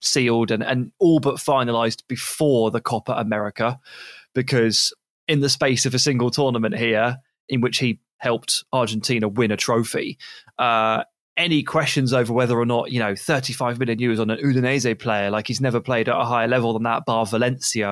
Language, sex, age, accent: English, male, 20-39, British